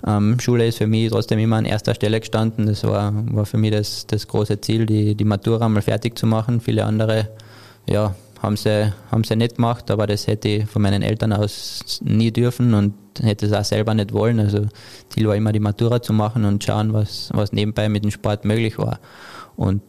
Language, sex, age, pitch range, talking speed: German, male, 20-39, 105-115 Hz, 215 wpm